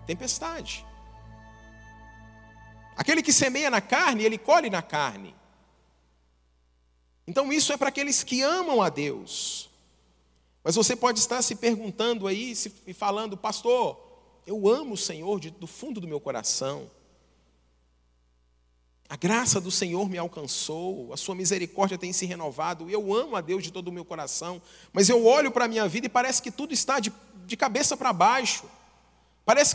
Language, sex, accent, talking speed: Portuguese, male, Brazilian, 155 wpm